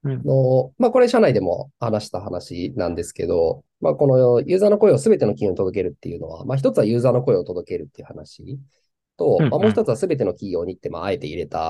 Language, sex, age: Japanese, male, 20-39